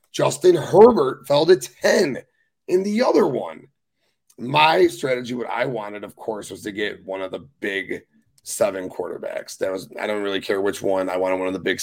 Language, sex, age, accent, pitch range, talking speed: English, male, 30-49, American, 105-125 Hz, 200 wpm